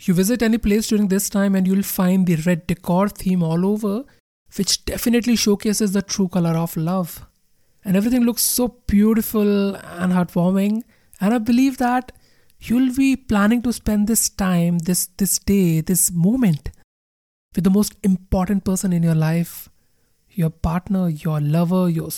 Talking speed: 160 wpm